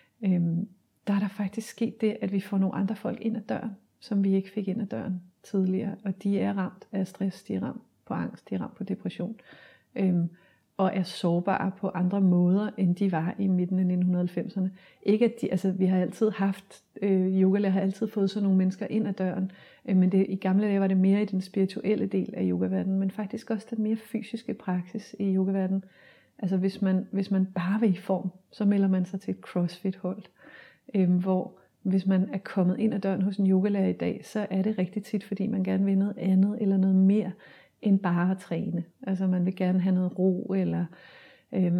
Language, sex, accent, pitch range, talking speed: Danish, female, native, 185-200 Hz, 220 wpm